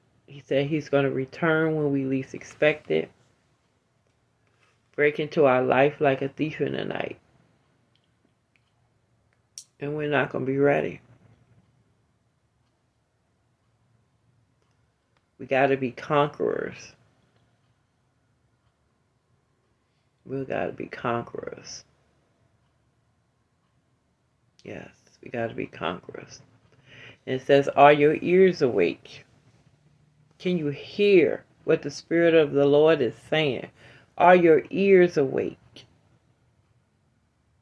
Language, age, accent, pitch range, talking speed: English, 40-59, American, 120-145 Hz, 105 wpm